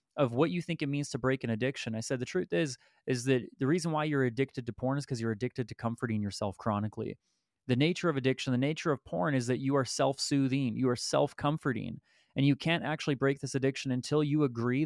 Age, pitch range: 30-49, 130-155 Hz